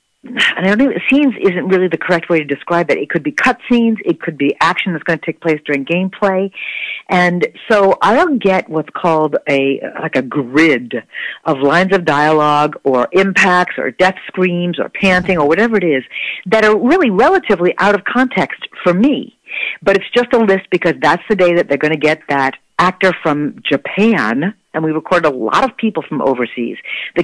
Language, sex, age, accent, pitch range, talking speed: English, female, 50-69, American, 155-210 Hz, 205 wpm